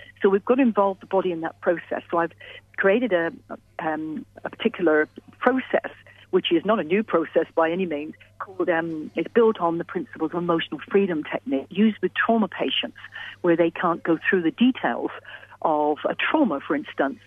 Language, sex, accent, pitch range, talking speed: English, female, British, 165-235 Hz, 190 wpm